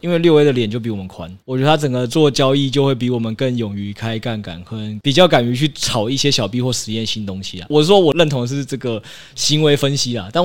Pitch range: 115-165 Hz